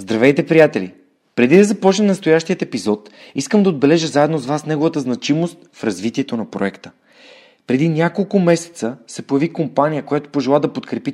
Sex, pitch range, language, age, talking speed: male, 120-155 Hz, Bulgarian, 30-49, 155 wpm